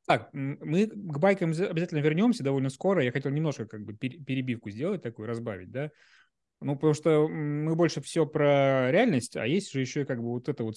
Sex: male